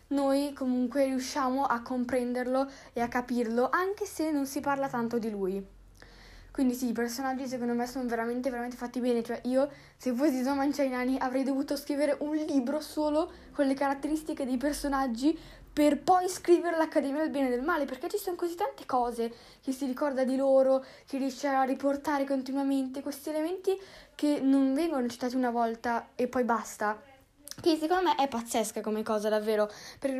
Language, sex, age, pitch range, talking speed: Italian, female, 10-29, 235-285 Hz, 175 wpm